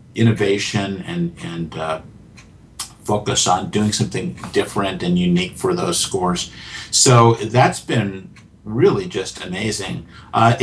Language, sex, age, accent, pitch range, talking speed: English, male, 50-69, American, 100-125 Hz, 120 wpm